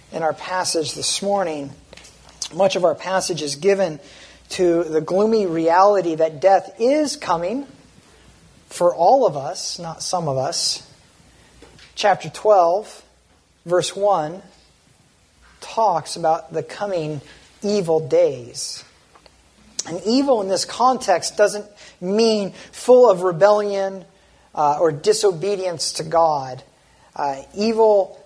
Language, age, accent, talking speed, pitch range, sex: English, 40-59, American, 115 wpm, 155-195 Hz, male